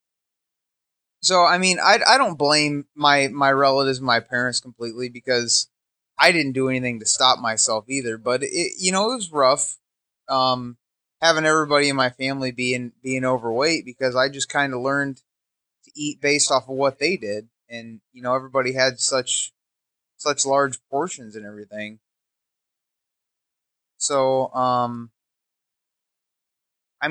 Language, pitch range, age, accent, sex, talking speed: English, 125-145 Hz, 20-39, American, male, 150 wpm